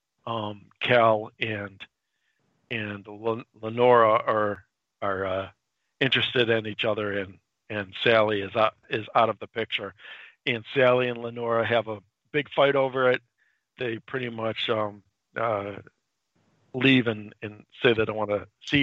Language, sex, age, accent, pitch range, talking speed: English, male, 50-69, American, 105-125 Hz, 145 wpm